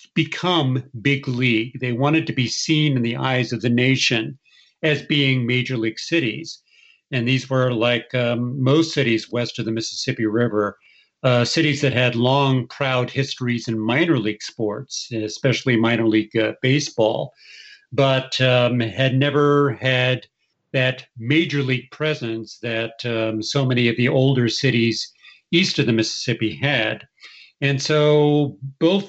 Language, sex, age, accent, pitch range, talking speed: English, male, 50-69, American, 115-140 Hz, 150 wpm